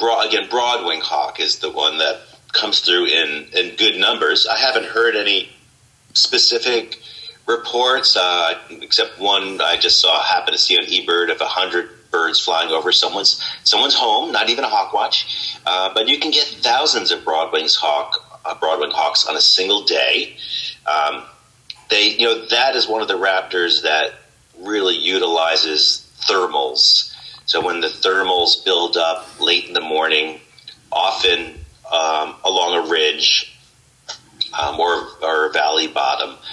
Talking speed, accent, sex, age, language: 155 wpm, American, male, 40-59, English